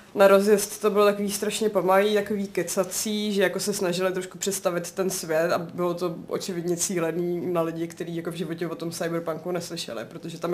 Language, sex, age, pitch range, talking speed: Czech, female, 20-39, 175-195 Hz, 195 wpm